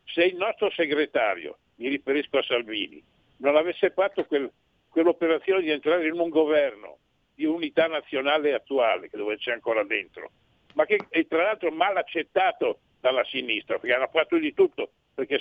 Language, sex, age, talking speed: Italian, male, 60-79, 165 wpm